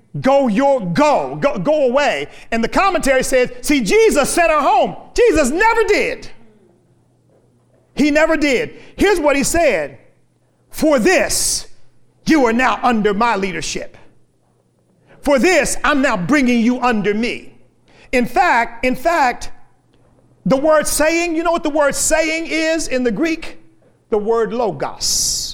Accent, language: American, English